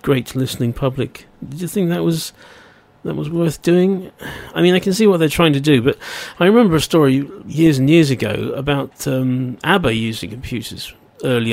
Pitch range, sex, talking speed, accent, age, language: 115-145 Hz, male, 195 wpm, British, 40-59, English